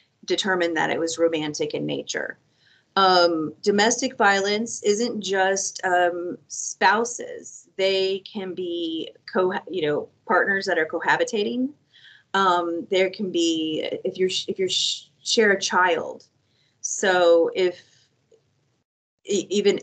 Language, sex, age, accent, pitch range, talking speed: English, female, 30-49, American, 170-210 Hz, 110 wpm